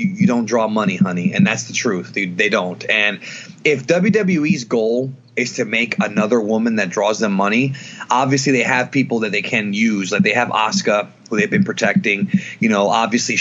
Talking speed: 195 wpm